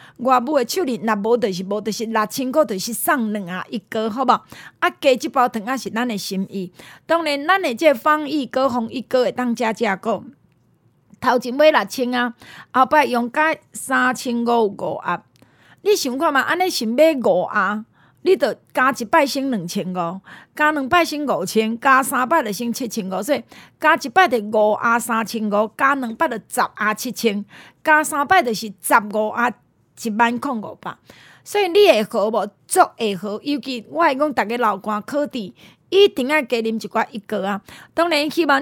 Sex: female